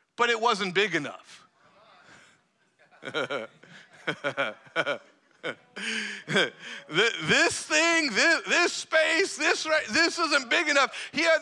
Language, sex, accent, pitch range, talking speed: English, male, American, 165-230 Hz, 85 wpm